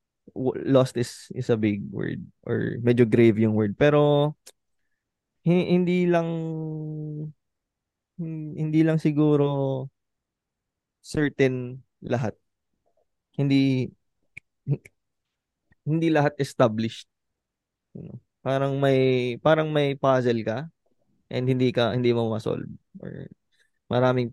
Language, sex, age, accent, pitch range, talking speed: Filipino, male, 20-39, native, 115-150 Hz, 90 wpm